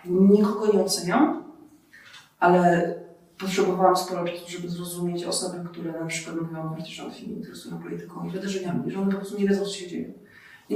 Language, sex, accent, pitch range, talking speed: Polish, female, native, 175-190 Hz, 155 wpm